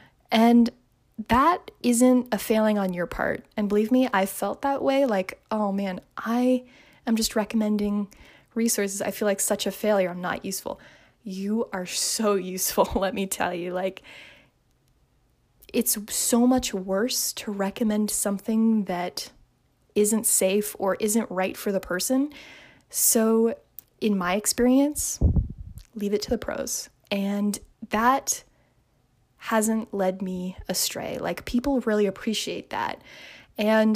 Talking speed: 140 wpm